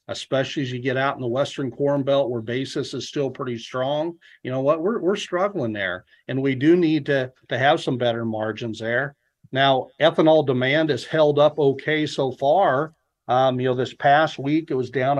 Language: English